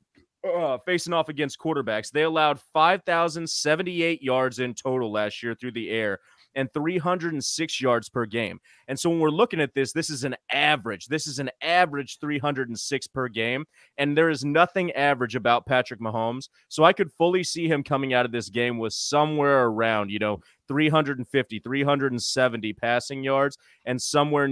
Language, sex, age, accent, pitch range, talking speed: English, male, 30-49, American, 120-150 Hz, 165 wpm